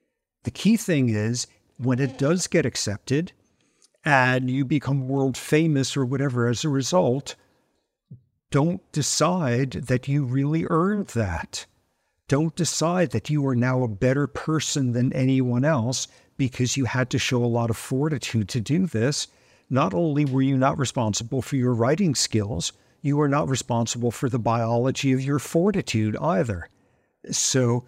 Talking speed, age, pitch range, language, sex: 155 wpm, 50-69, 120-155 Hz, English, male